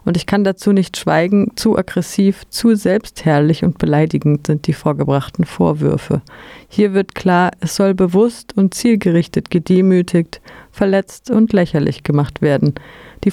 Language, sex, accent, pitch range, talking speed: German, female, German, 160-195 Hz, 140 wpm